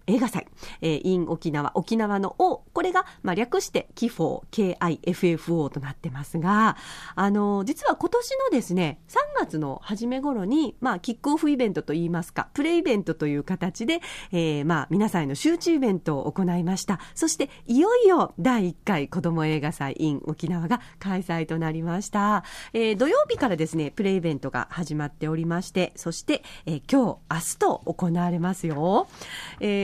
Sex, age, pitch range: female, 40-59, 165-245 Hz